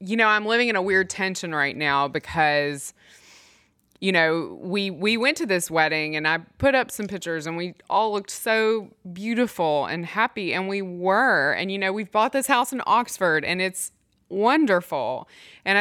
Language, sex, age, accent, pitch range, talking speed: English, female, 20-39, American, 170-215 Hz, 185 wpm